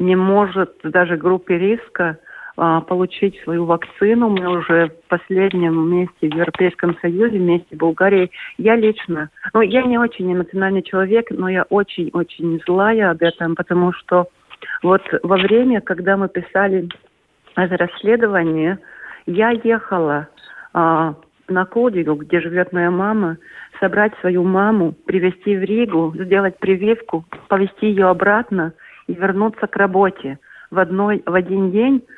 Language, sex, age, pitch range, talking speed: Russian, female, 40-59, 175-205 Hz, 130 wpm